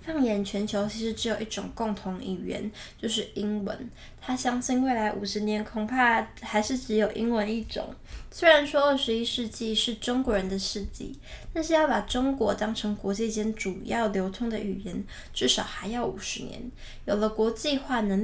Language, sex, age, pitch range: Chinese, female, 10-29, 210-250 Hz